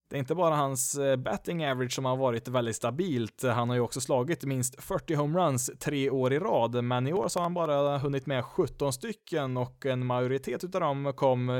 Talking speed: 210 wpm